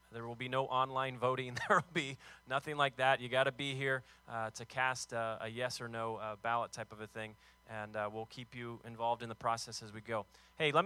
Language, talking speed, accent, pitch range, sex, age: English, 250 wpm, American, 115-140 Hz, male, 30-49